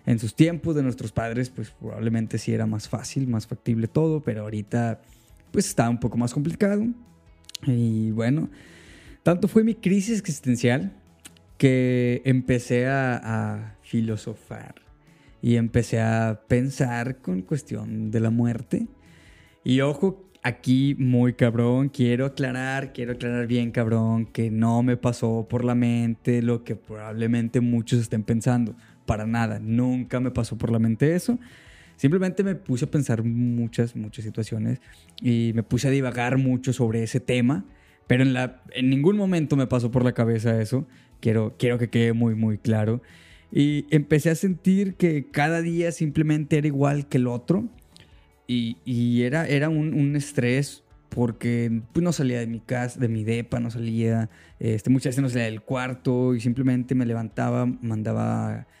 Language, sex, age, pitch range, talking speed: Spanish, male, 20-39, 115-135 Hz, 160 wpm